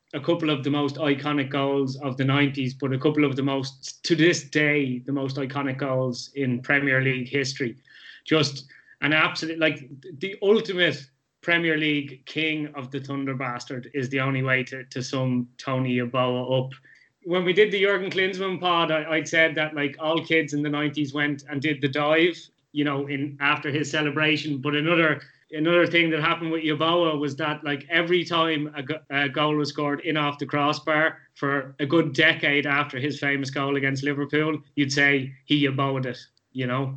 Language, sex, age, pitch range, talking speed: English, male, 20-39, 140-165 Hz, 190 wpm